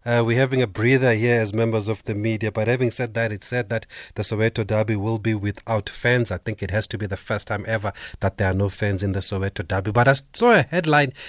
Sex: male